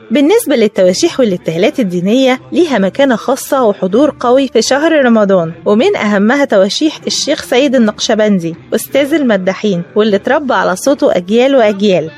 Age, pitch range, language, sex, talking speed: 20-39, 205-275 Hz, Arabic, female, 130 wpm